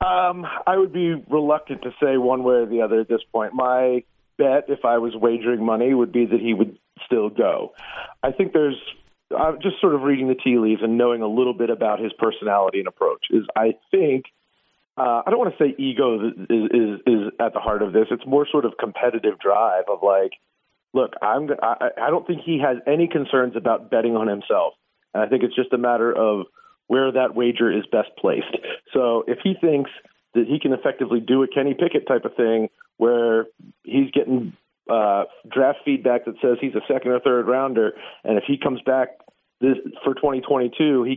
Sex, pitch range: male, 115-145 Hz